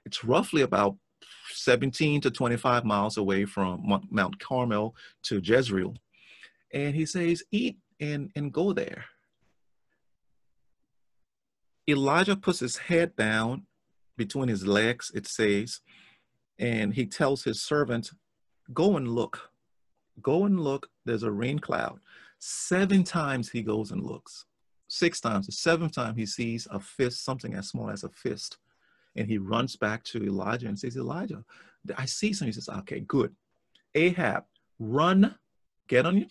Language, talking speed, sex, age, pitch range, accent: English, 145 wpm, male, 40-59, 110-160 Hz, American